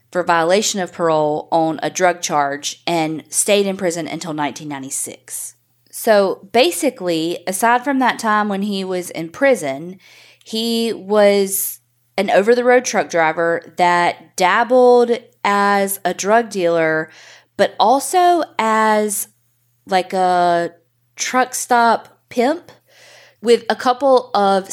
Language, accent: English, American